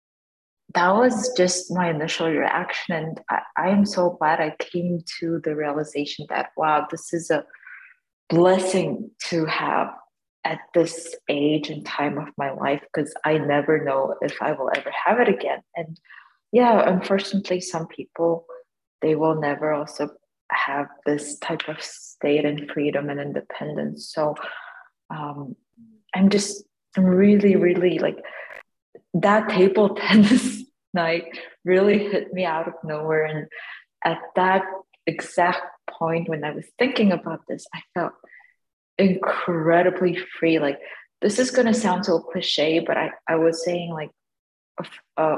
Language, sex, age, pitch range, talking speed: English, female, 30-49, 155-200 Hz, 145 wpm